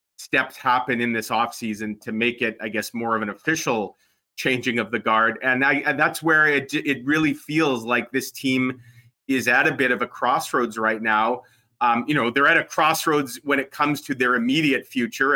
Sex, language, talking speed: male, English, 205 wpm